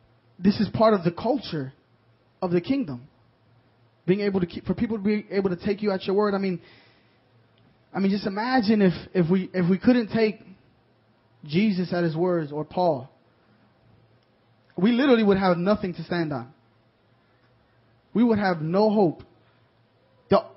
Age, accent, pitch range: 20-39, American, 125-205 Hz